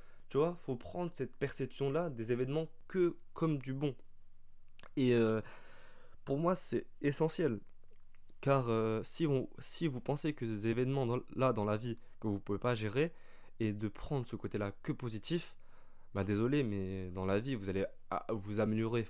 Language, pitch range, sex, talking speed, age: French, 105-135 Hz, male, 180 wpm, 20-39